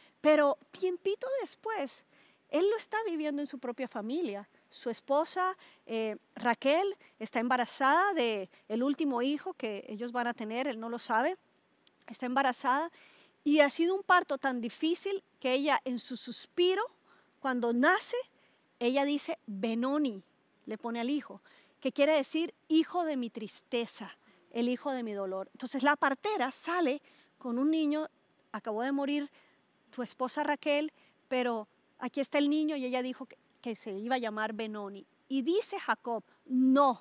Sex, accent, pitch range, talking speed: female, American, 240-310 Hz, 155 wpm